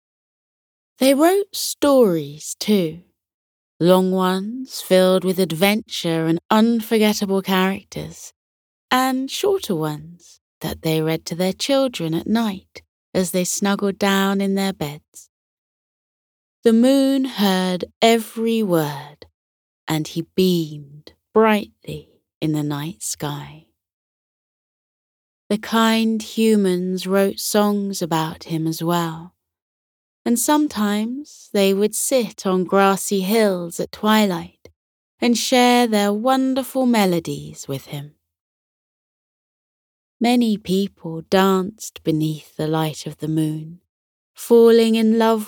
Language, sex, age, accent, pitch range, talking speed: English, female, 30-49, British, 155-220 Hz, 105 wpm